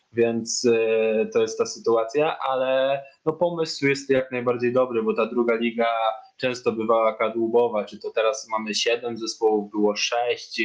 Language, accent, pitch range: Polish, native, 120-135 Hz